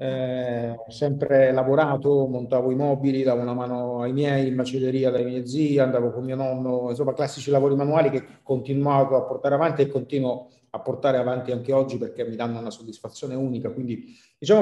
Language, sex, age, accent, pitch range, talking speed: Italian, male, 30-49, native, 125-155 Hz, 185 wpm